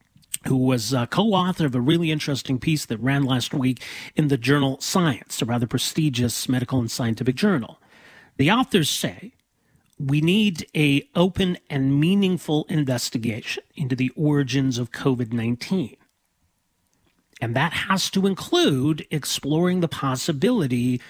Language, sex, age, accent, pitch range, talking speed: English, male, 40-59, American, 125-160 Hz, 135 wpm